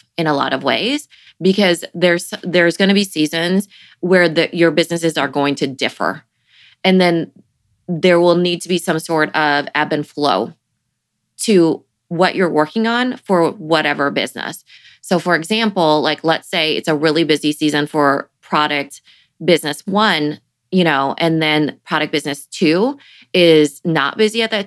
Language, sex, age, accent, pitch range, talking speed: English, female, 20-39, American, 150-185 Hz, 165 wpm